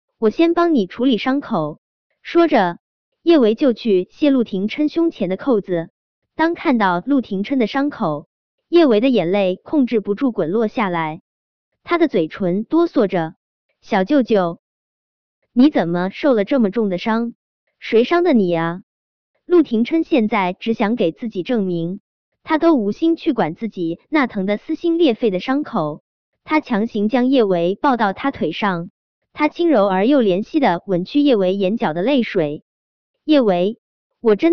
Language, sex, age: Chinese, male, 20-39